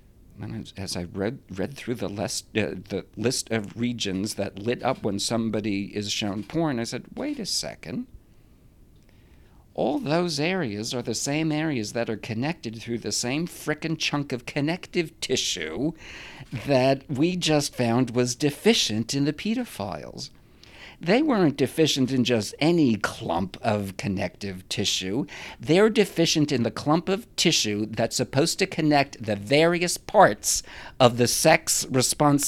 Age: 50-69